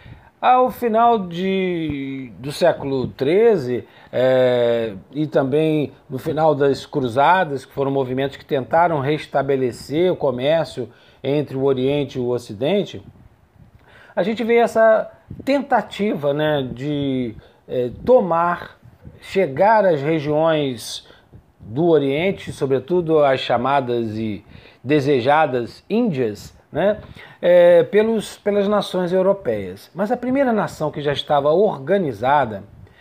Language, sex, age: Portuguese, male, 40-59